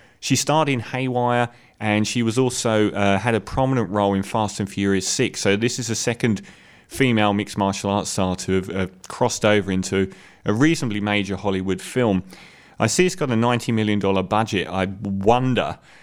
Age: 30-49